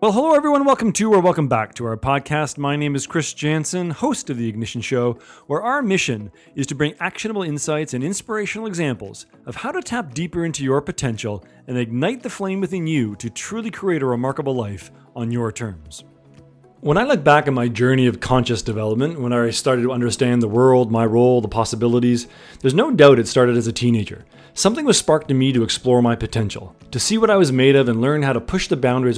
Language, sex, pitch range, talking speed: English, male, 115-165 Hz, 220 wpm